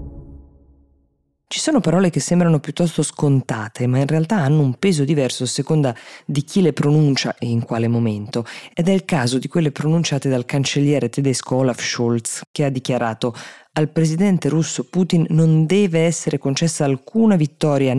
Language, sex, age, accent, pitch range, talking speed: Italian, female, 20-39, native, 125-170 Hz, 165 wpm